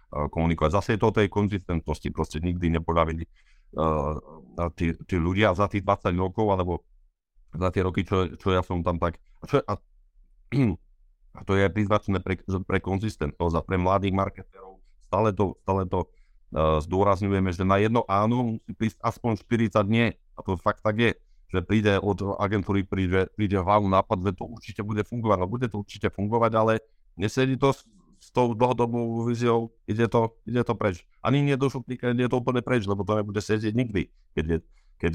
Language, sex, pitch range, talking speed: Slovak, male, 85-110 Hz, 180 wpm